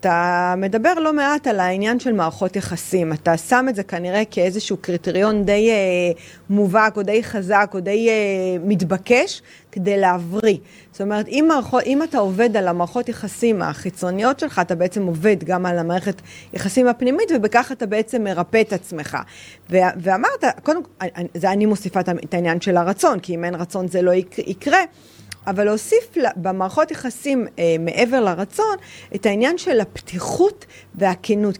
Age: 40-59